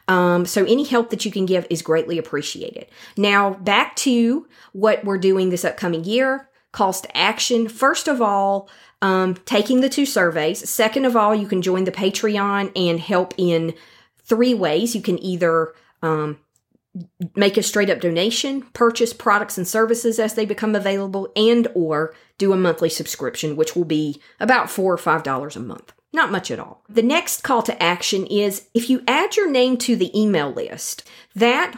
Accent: American